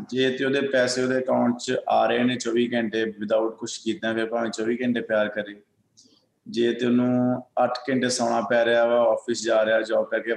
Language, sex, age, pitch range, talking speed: Punjabi, male, 20-39, 105-120 Hz, 115 wpm